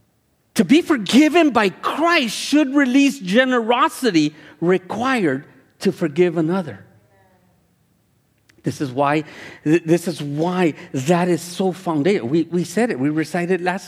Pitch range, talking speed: 135-200 Hz, 115 wpm